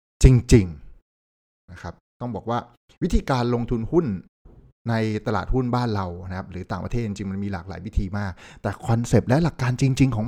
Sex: male